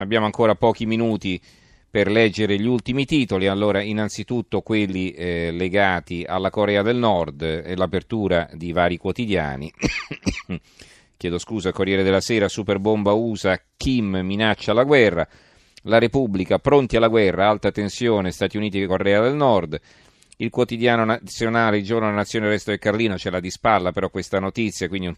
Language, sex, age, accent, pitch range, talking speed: Italian, male, 40-59, native, 90-110 Hz, 160 wpm